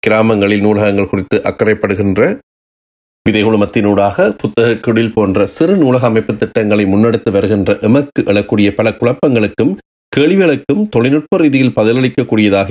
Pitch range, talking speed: 100-115 Hz, 105 wpm